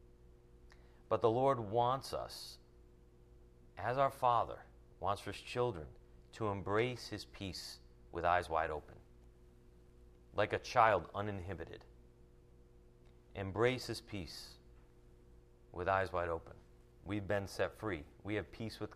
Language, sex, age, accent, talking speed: English, male, 40-59, American, 125 wpm